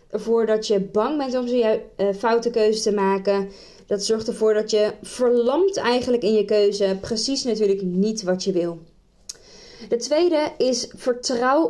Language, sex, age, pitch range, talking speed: Dutch, female, 20-39, 200-255 Hz, 160 wpm